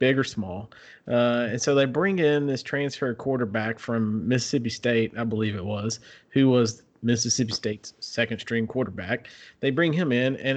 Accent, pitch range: American, 115-150 Hz